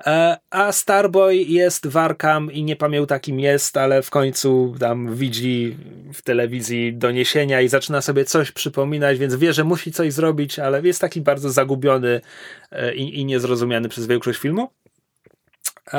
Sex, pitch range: male, 125-180 Hz